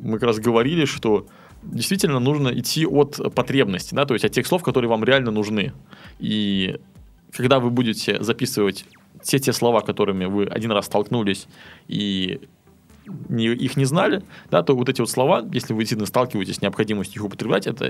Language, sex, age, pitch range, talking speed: Russian, male, 20-39, 105-140 Hz, 165 wpm